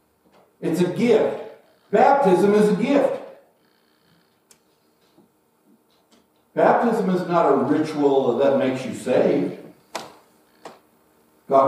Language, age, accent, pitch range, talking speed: English, 60-79, American, 130-190 Hz, 85 wpm